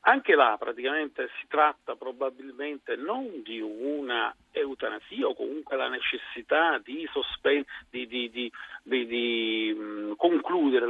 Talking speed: 130 wpm